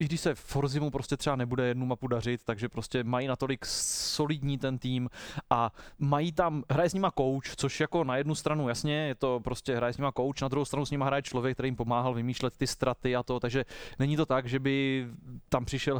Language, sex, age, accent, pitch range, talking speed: Czech, male, 20-39, native, 120-140 Hz, 225 wpm